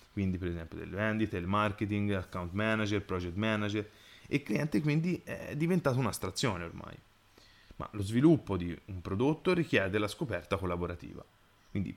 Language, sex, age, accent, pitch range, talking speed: Italian, male, 20-39, native, 95-140 Hz, 150 wpm